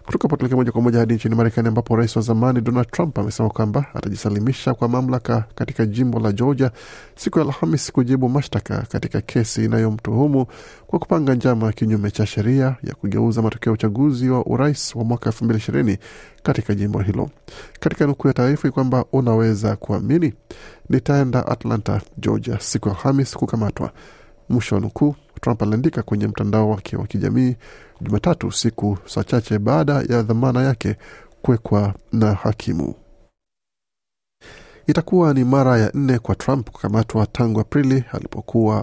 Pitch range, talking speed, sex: 110-130 Hz, 145 wpm, male